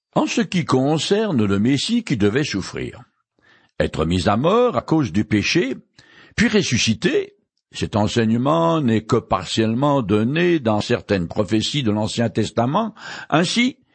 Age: 60-79